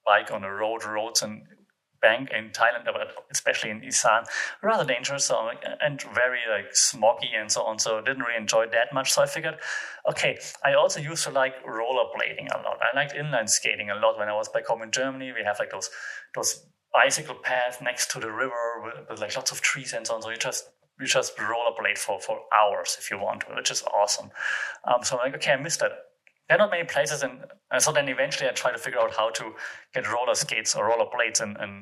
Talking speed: 235 wpm